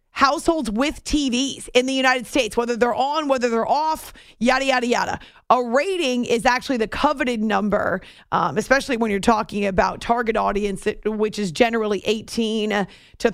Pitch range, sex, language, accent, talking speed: 210-250 Hz, female, English, American, 160 wpm